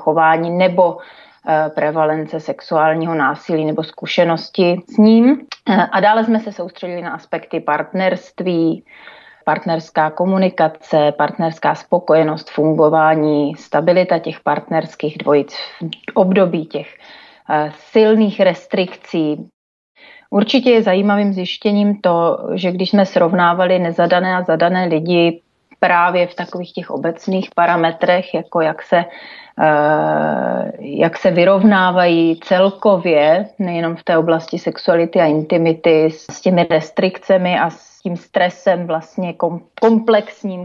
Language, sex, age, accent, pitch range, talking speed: Czech, female, 30-49, native, 160-185 Hz, 110 wpm